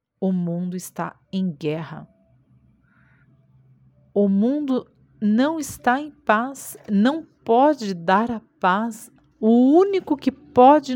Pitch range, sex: 180-245 Hz, female